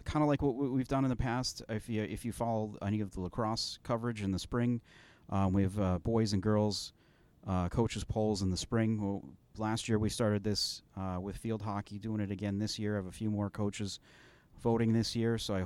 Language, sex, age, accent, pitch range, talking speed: English, male, 30-49, American, 95-115 Hz, 235 wpm